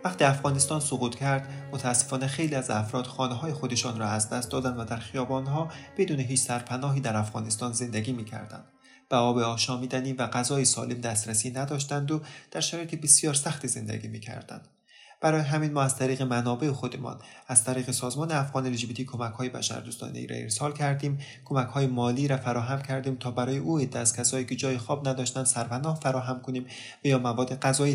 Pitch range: 115-135 Hz